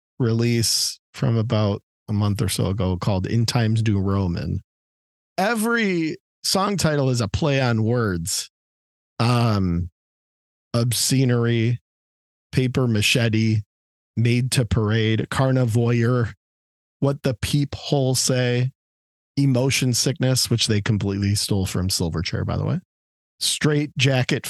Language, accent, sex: English, American, male